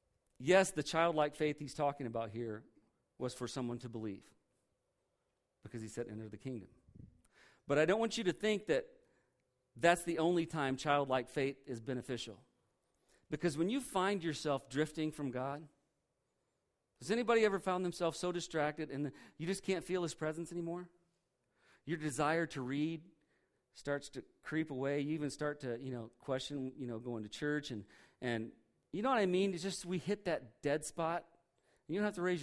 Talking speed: 180 wpm